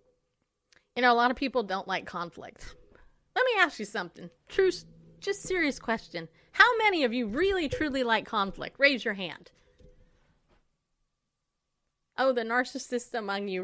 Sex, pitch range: female, 180-255 Hz